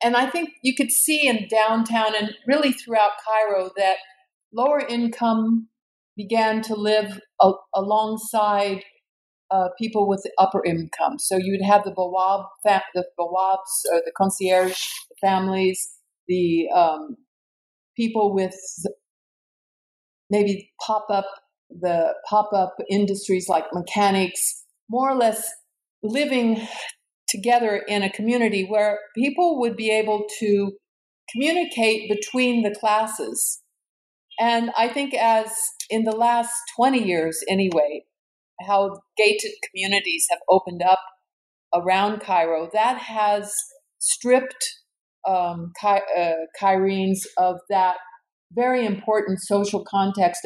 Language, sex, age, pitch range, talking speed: English, female, 50-69, 190-230 Hz, 115 wpm